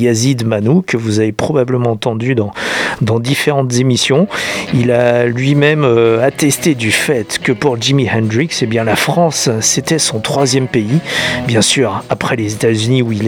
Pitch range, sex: 115-140 Hz, male